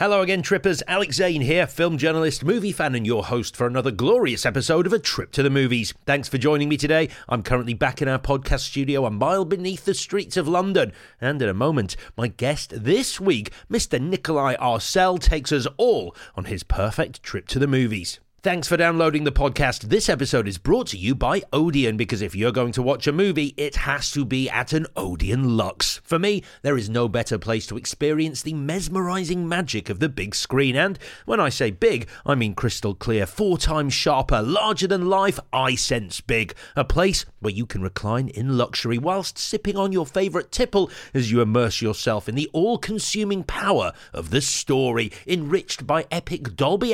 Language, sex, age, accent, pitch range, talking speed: English, male, 40-59, British, 115-175 Hz, 200 wpm